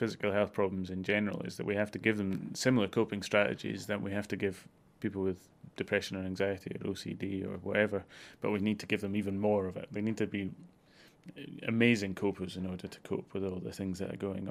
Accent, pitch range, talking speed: British, 95-105 Hz, 230 wpm